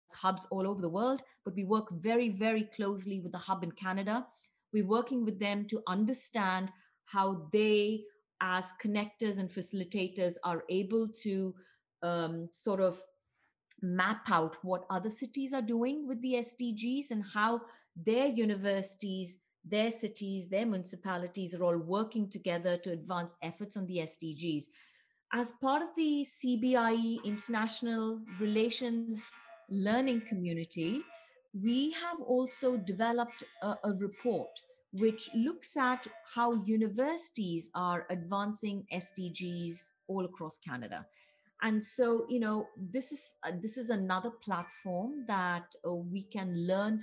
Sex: female